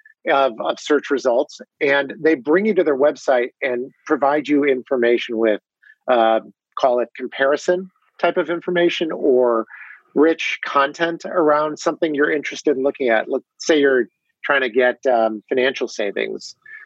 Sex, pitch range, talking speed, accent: male, 125-170 Hz, 150 wpm, American